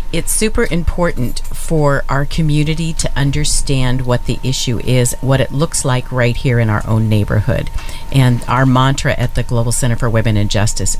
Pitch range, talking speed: 115-140 Hz, 180 wpm